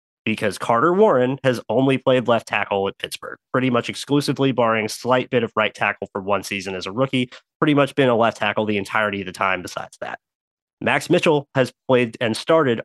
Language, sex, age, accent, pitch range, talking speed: English, male, 30-49, American, 105-130 Hz, 210 wpm